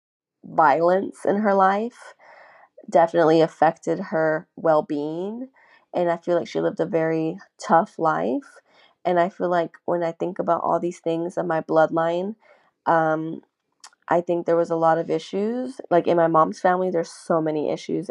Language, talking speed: English, 165 wpm